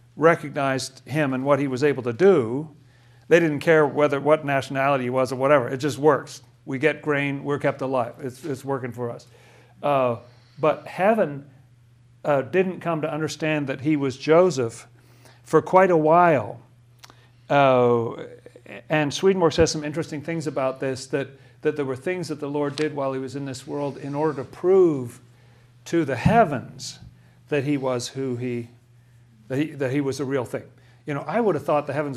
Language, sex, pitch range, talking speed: English, male, 125-155 Hz, 190 wpm